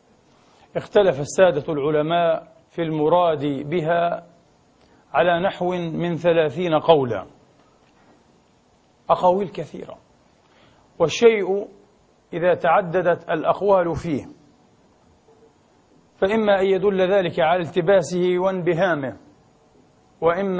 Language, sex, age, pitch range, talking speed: Arabic, male, 50-69, 160-190 Hz, 75 wpm